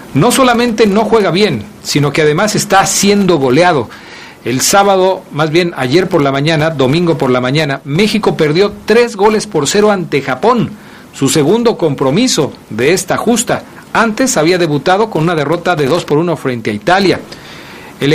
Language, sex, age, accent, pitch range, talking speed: Spanish, male, 40-59, Mexican, 145-200 Hz, 170 wpm